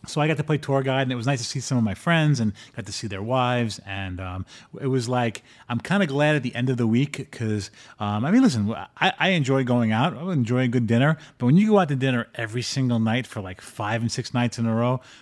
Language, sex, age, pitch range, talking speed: English, male, 30-49, 110-145 Hz, 280 wpm